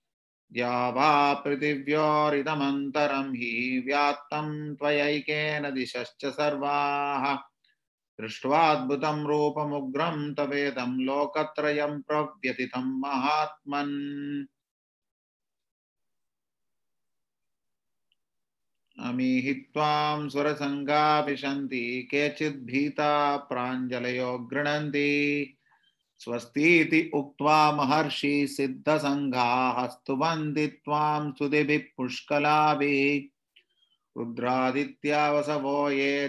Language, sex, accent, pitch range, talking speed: English, male, Indian, 135-150 Hz, 70 wpm